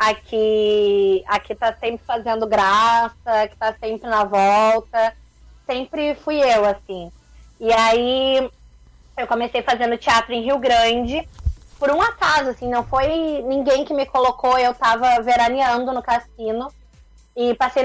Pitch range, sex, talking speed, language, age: 240-295 Hz, female, 140 wpm, Portuguese, 20-39